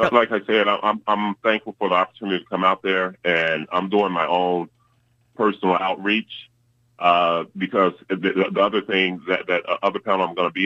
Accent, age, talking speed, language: American, 30-49, 190 wpm, English